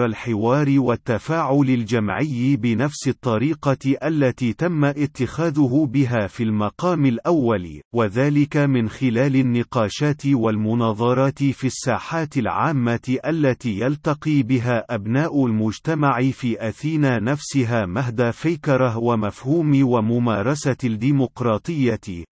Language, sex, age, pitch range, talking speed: Arabic, male, 40-59, 115-140 Hz, 90 wpm